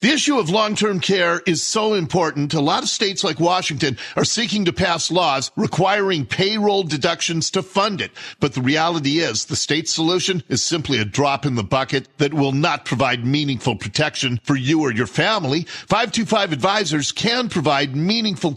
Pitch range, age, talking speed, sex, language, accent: 145-205 Hz, 50-69, 180 wpm, male, English, American